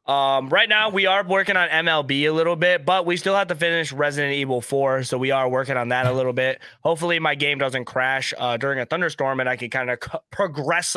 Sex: male